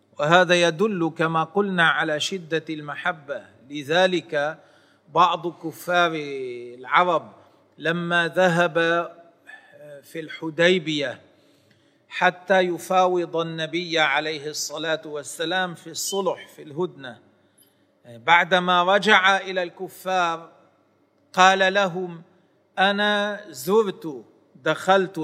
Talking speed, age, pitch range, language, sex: 80 wpm, 40-59, 155-190 Hz, Arabic, male